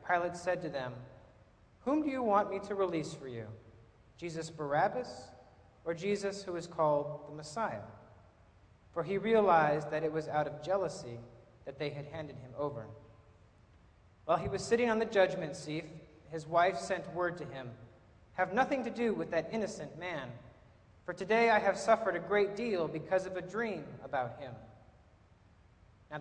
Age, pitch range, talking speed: 40-59, 115-190 Hz, 170 wpm